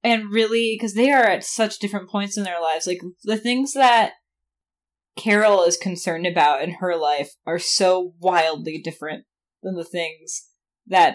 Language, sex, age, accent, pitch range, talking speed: English, female, 10-29, American, 185-245 Hz, 165 wpm